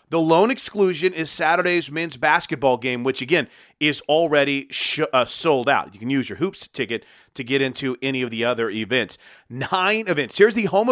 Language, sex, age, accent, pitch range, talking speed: English, male, 30-49, American, 140-195 Hz, 185 wpm